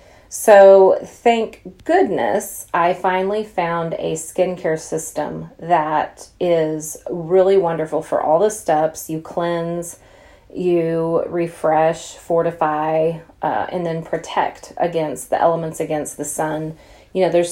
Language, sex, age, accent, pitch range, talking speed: English, female, 30-49, American, 160-185 Hz, 120 wpm